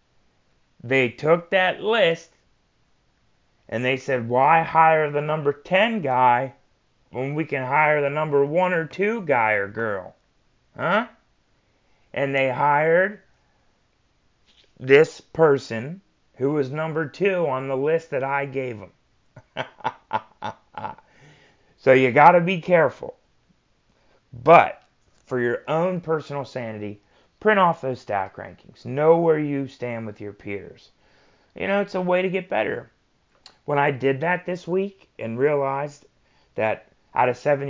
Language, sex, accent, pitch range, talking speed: English, male, American, 120-165 Hz, 135 wpm